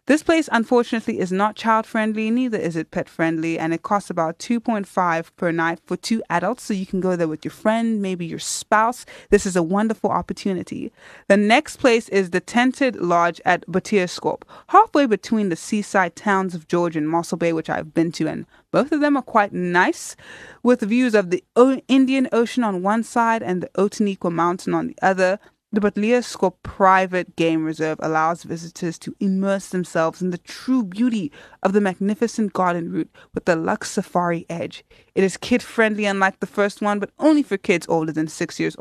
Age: 20-39